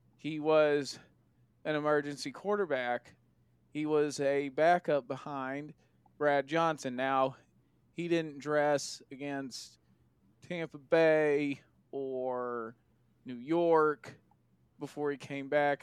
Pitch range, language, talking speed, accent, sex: 135-165 Hz, English, 100 wpm, American, male